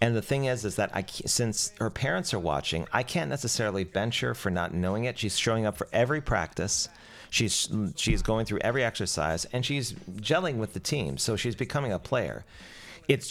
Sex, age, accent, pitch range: male, 40-59, American, 85-115 Hz